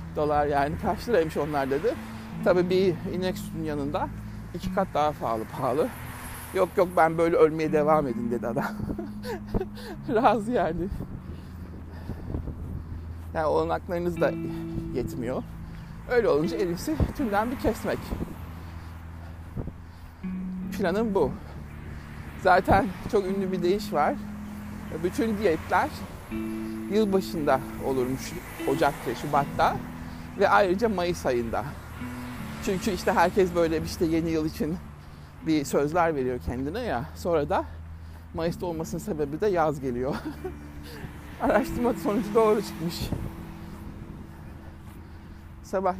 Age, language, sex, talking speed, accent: 60-79, Turkish, male, 105 wpm, native